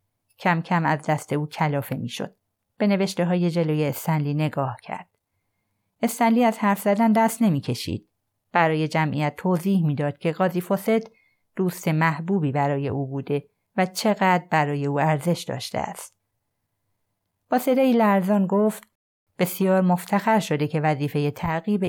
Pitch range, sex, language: 145-195 Hz, female, Persian